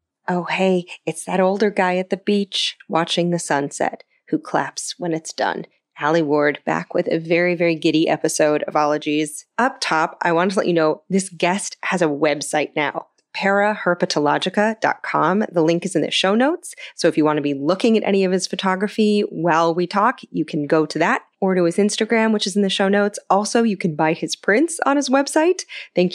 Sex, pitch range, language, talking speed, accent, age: female, 160-200 Hz, English, 205 wpm, American, 30-49